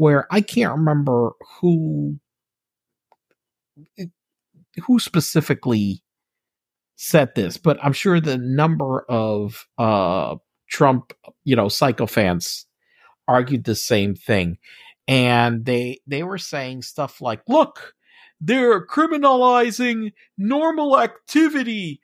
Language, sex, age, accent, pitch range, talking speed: English, male, 50-69, American, 145-240 Hz, 100 wpm